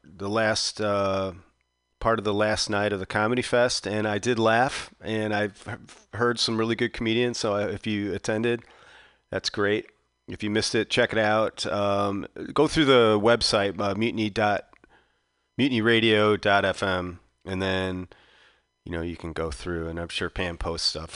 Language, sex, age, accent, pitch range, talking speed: English, male, 30-49, American, 100-140 Hz, 160 wpm